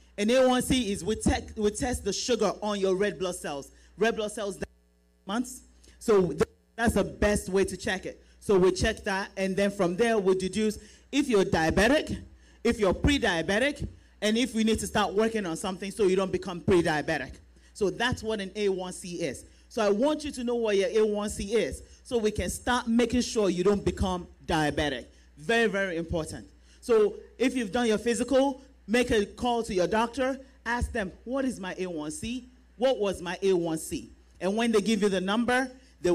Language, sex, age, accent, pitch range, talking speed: English, male, 30-49, Nigerian, 175-225 Hz, 190 wpm